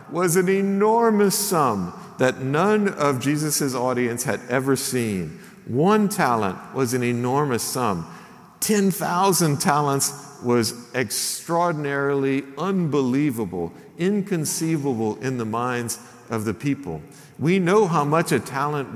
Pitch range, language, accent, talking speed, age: 130-195 Hz, English, American, 115 wpm, 50-69